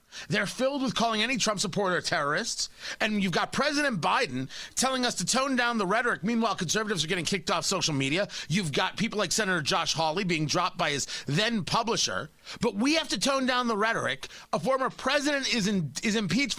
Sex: male